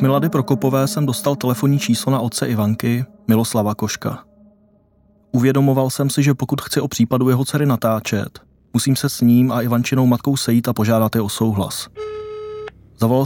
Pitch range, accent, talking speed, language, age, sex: 110-135 Hz, native, 165 wpm, Czech, 20-39, male